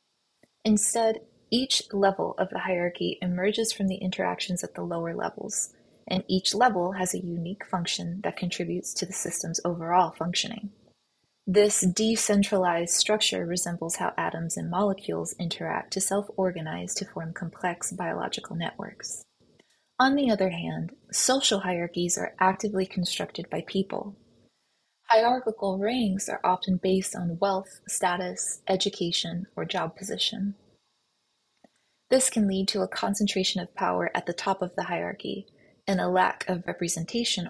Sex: female